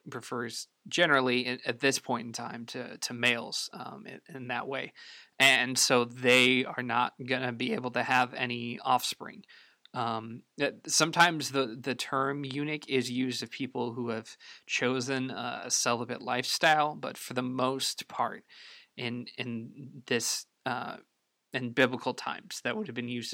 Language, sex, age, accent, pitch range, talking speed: English, male, 20-39, American, 120-135 Hz, 155 wpm